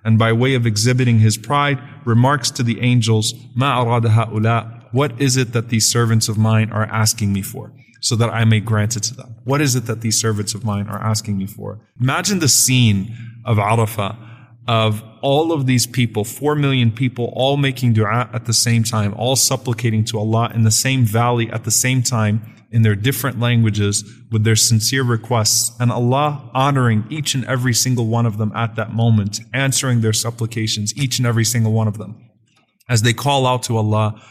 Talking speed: 200 wpm